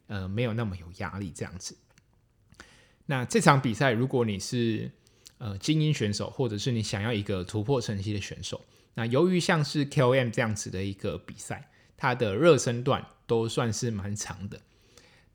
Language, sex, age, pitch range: Chinese, male, 20-39, 105-130 Hz